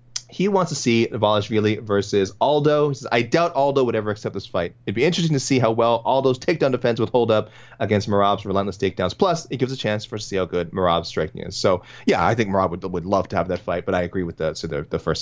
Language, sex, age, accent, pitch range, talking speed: English, male, 30-49, American, 95-125 Hz, 260 wpm